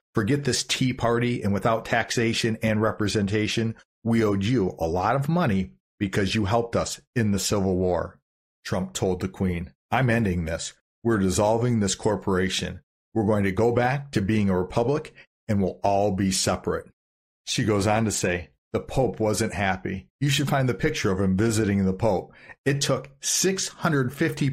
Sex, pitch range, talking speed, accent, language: male, 95-120 Hz, 175 wpm, American, English